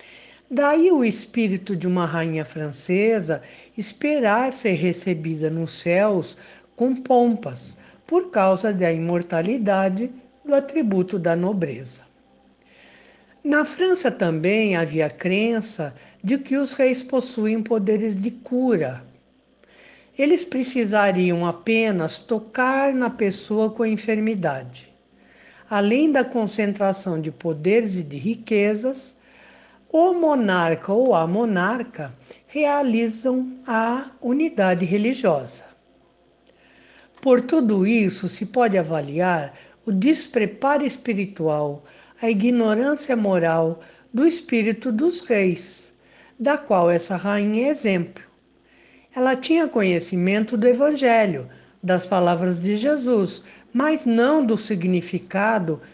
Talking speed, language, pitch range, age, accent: 105 wpm, Portuguese, 180-250 Hz, 60-79, Brazilian